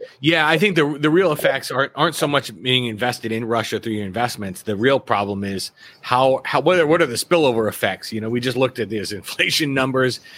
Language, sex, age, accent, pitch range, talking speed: English, male, 30-49, American, 110-135 Hz, 230 wpm